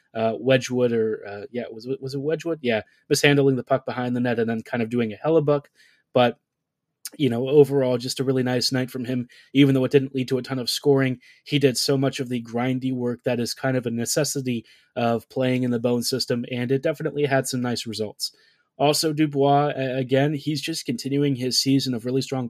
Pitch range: 125-140 Hz